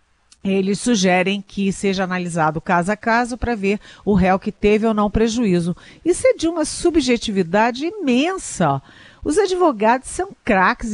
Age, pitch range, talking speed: 50-69, 180-235 Hz, 150 wpm